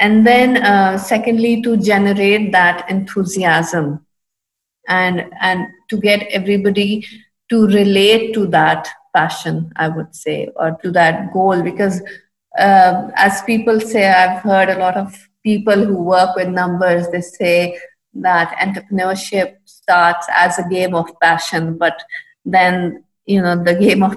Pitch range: 175-210 Hz